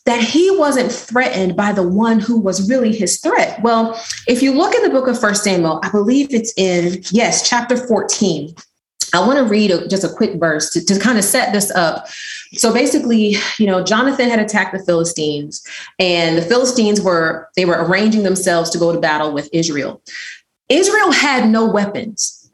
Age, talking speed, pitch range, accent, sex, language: 30-49, 190 wpm, 185-255 Hz, American, female, English